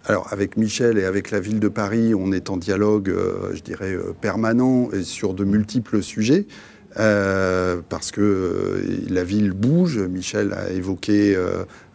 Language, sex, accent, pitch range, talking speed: French, male, French, 95-115 Hz, 155 wpm